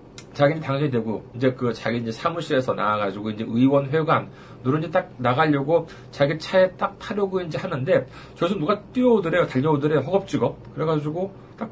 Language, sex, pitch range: Korean, male, 120-160 Hz